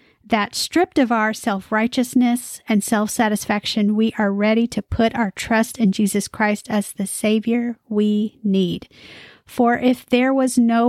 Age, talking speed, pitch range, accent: 40-59, 160 wpm, 210-245 Hz, American